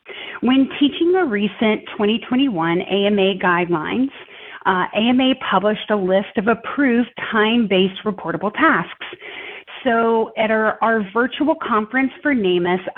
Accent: American